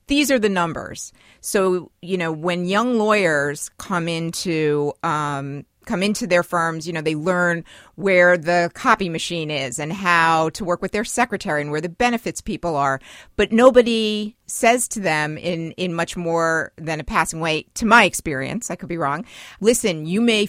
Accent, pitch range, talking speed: American, 160-200 Hz, 180 wpm